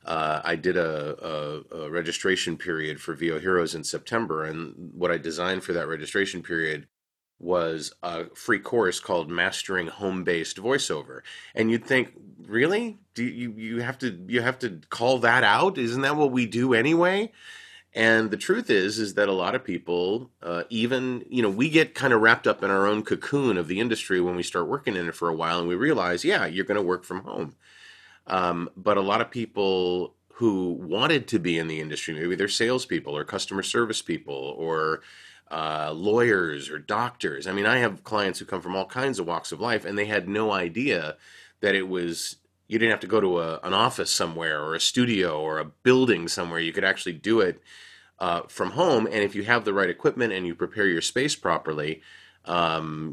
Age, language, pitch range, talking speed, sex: 30-49, English, 85-115 Hz, 205 wpm, male